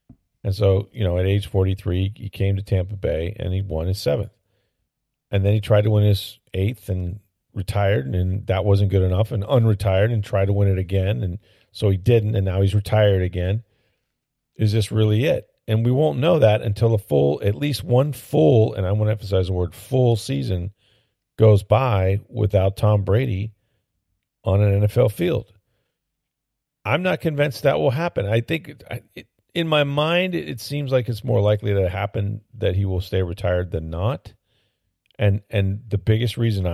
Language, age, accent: English, 40-59, American